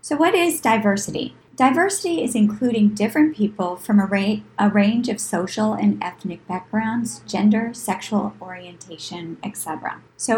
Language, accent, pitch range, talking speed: English, American, 195-240 Hz, 140 wpm